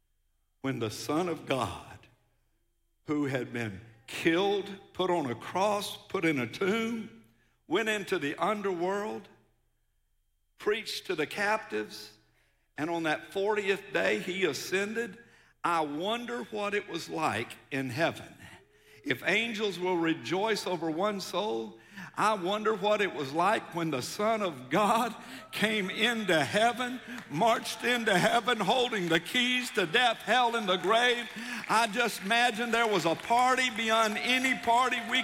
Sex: male